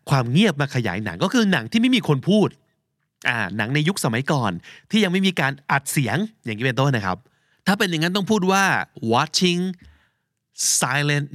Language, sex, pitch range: Thai, male, 110-160 Hz